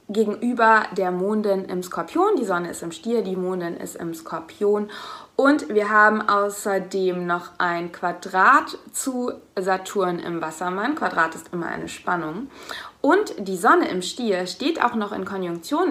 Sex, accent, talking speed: female, German, 155 wpm